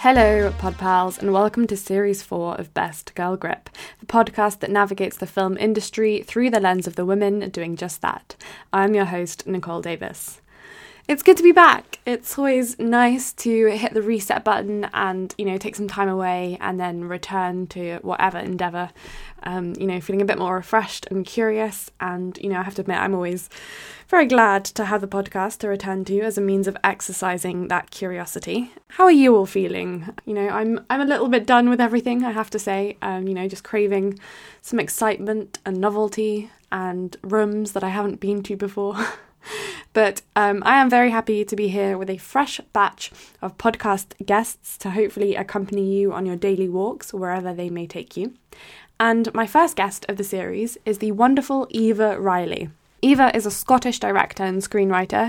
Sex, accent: female, British